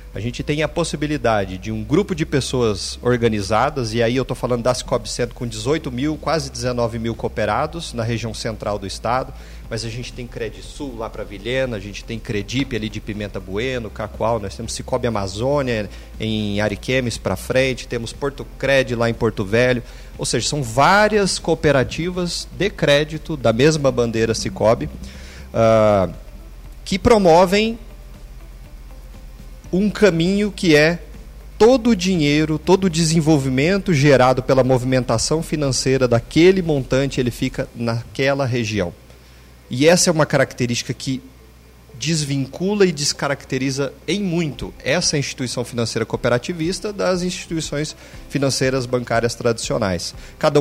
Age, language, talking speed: 40-59, Portuguese, 140 wpm